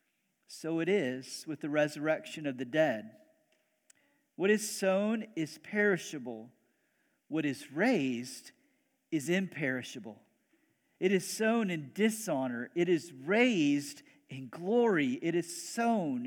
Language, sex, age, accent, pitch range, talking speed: English, male, 50-69, American, 150-220 Hz, 120 wpm